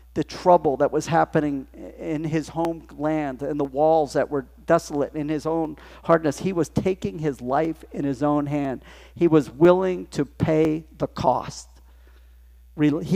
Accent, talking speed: American, 160 wpm